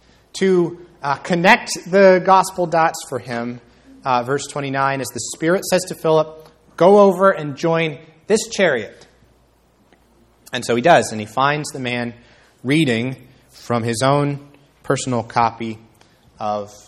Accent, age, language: American, 30-49, English